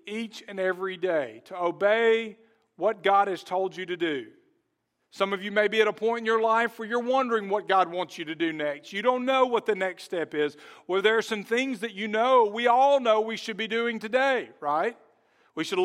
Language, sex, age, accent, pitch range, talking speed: English, male, 50-69, American, 200-250 Hz, 230 wpm